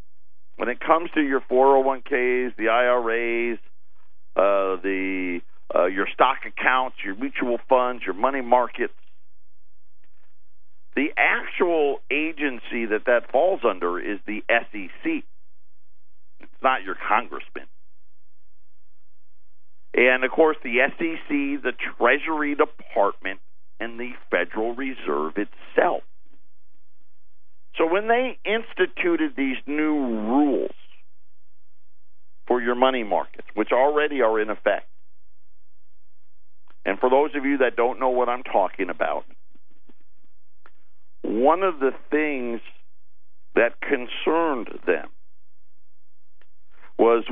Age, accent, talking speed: 50-69, American, 105 wpm